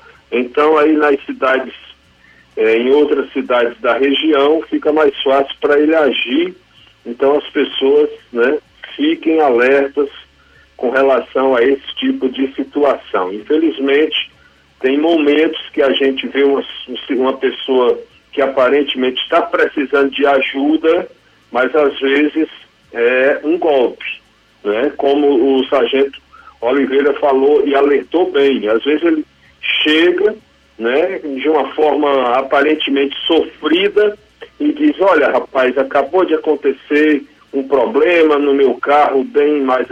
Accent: Brazilian